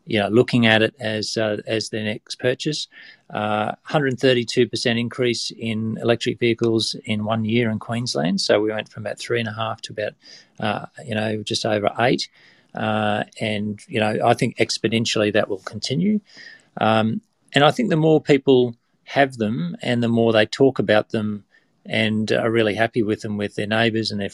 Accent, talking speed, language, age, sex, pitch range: Australian, 185 wpm, English, 40-59, male, 110-120 Hz